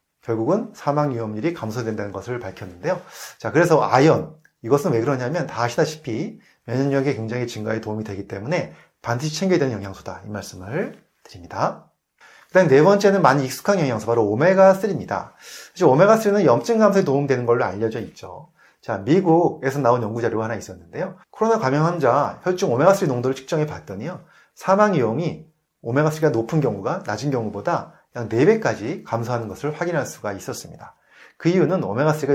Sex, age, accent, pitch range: male, 30-49, native, 115-185 Hz